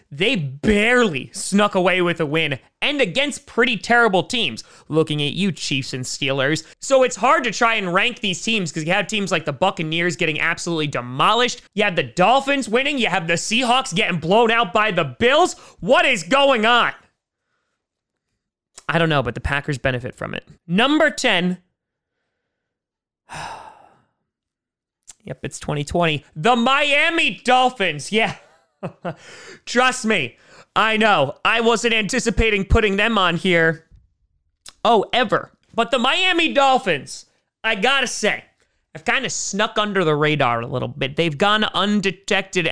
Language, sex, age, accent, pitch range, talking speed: English, male, 30-49, American, 165-235 Hz, 150 wpm